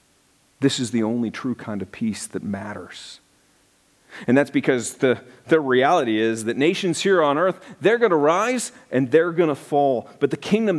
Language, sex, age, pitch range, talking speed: English, male, 40-59, 130-210 Hz, 190 wpm